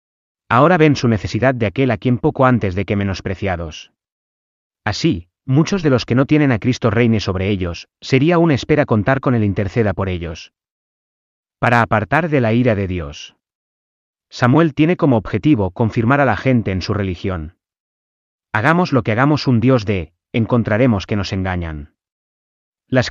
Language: Spanish